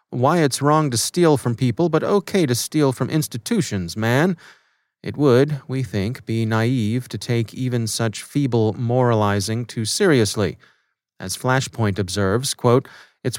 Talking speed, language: 150 wpm, English